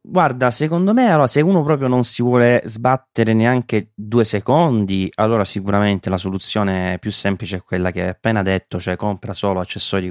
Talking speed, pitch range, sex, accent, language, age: 180 wpm, 90-105 Hz, male, native, Italian, 20-39